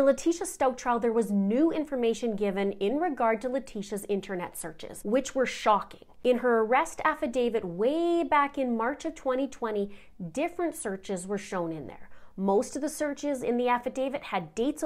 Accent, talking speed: American, 180 wpm